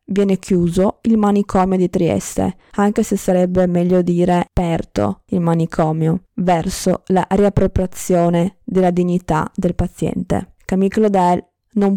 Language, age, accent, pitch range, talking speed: Italian, 20-39, native, 180-215 Hz, 120 wpm